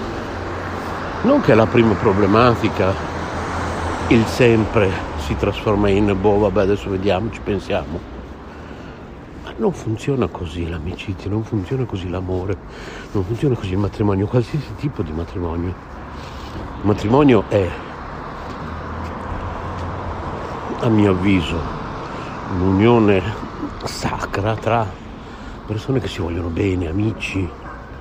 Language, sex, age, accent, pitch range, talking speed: Italian, male, 60-79, native, 90-110 Hz, 105 wpm